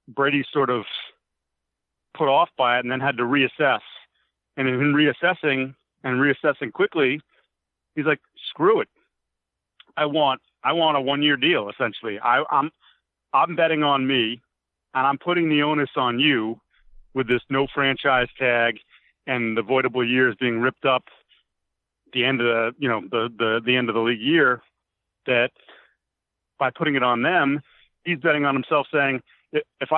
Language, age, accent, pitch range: English, 40-59, American, 125-150 Hz